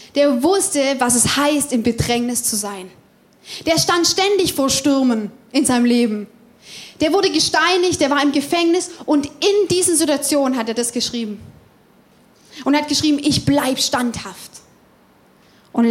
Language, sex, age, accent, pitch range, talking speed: German, female, 20-39, German, 230-290 Hz, 150 wpm